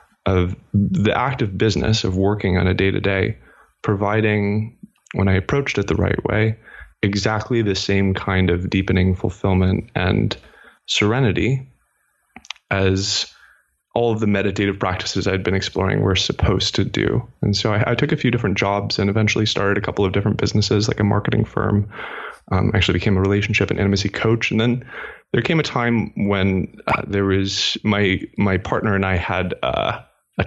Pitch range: 95-110 Hz